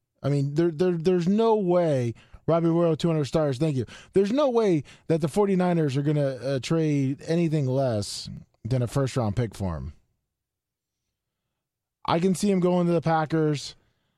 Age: 20-39